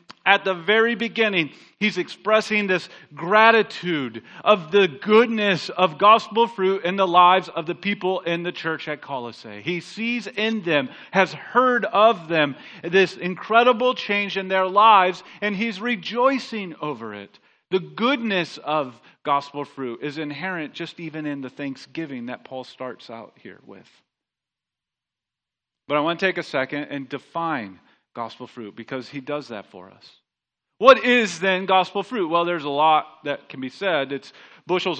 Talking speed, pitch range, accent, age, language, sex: 160 wpm, 155-210 Hz, American, 40-59, English, male